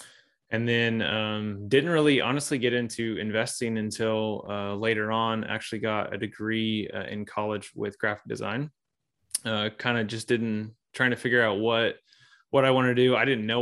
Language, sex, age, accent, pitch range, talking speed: English, male, 20-39, American, 105-120 Hz, 180 wpm